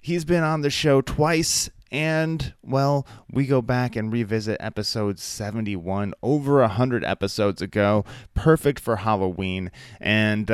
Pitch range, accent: 95-125 Hz, American